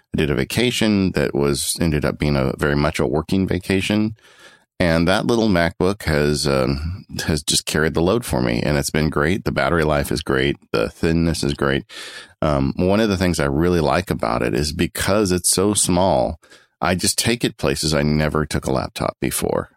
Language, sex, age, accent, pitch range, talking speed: English, male, 40-59, American, 70-90 Hz, 205 wpm